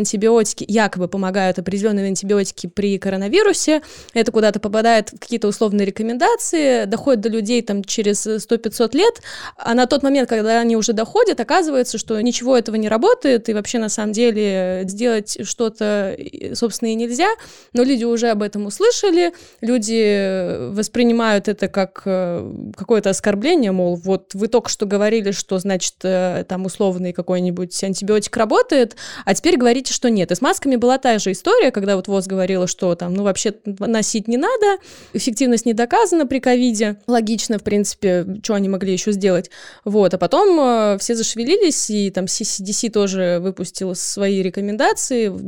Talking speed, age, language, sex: 160 wpm, 20-39, Russian, female